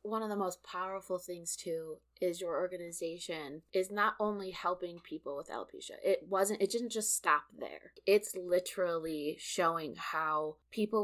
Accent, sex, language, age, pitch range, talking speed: American, female, English, 20-39, 165-195 Hz, 160 wpm